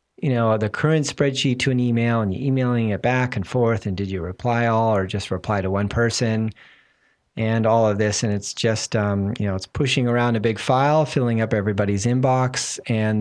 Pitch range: 110-140 Hz